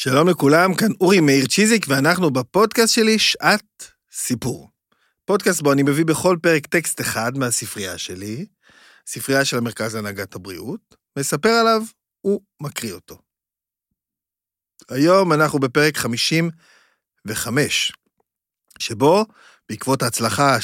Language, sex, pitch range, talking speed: Hebrew, male, 120-165 Hz, 110 wpm